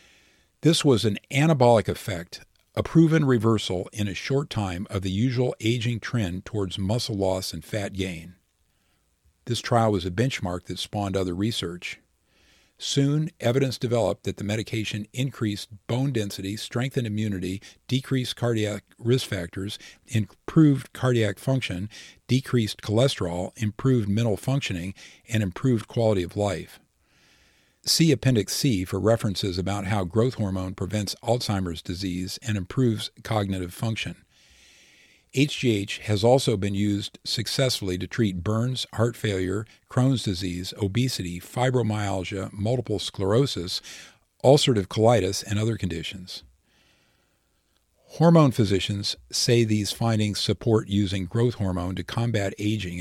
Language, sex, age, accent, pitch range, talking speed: English, male, 50-69, American, 95-120 Hz, 125 wpm